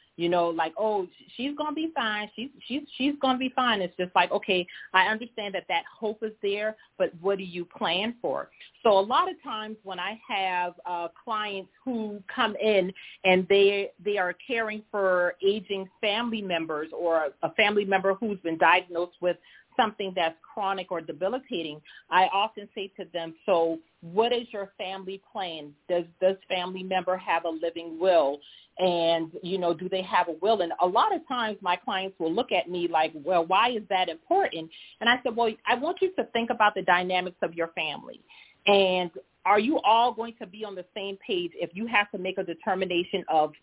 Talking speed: 205 wpm